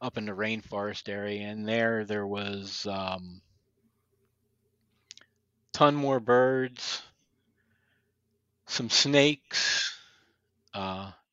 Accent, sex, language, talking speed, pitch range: American, male, English, 85 wpm, 105-125 Hz